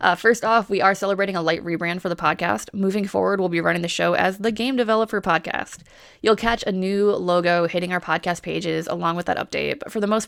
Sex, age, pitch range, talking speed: female, 20-39, 175-225 Hz, 240 wpm